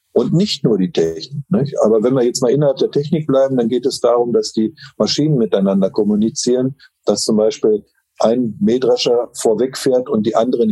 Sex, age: male, 50-69